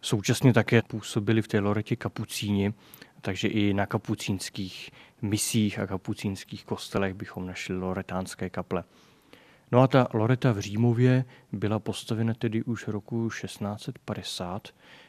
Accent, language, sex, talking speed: native, Czech, male, 125 wpm